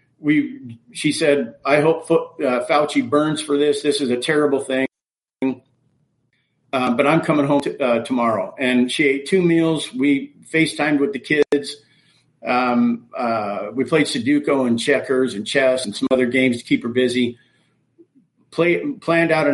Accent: American